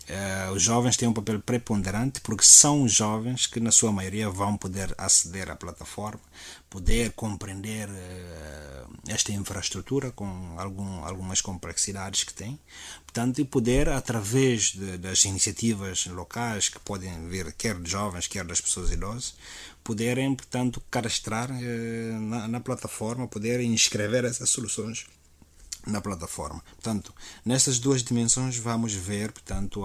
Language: Portuguese